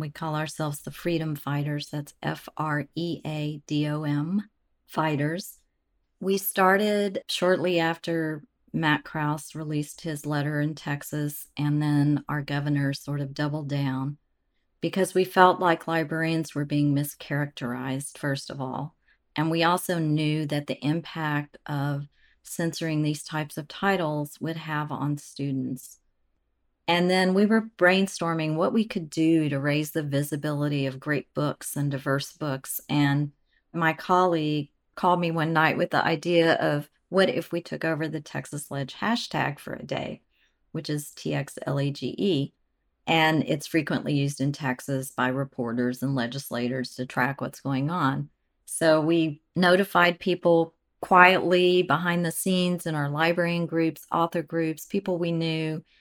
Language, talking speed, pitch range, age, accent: English, 140 wpm, 145-170 Hz, 40-59, American